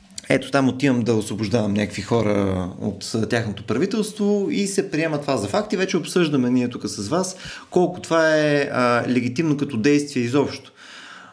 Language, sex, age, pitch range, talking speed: Bulgarian, male, 30-49, 105-160 Hz, 170 wpm